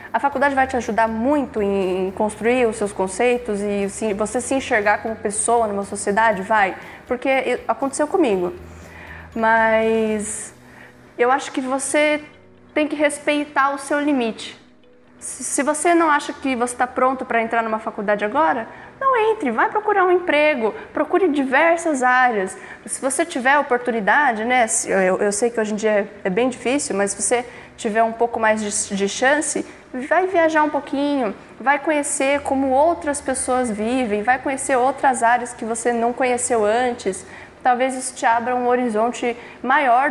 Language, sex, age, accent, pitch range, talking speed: Portuguese, female, 10-29, Brazilian, 220-285 Hz, 160 wpm